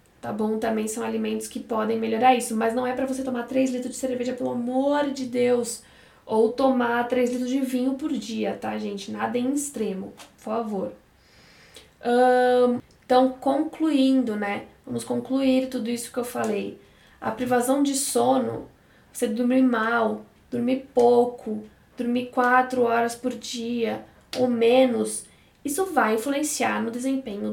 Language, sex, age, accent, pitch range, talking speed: Portuguese, female, 10-29, Brazilian, 240-270 Hz, 150 wpm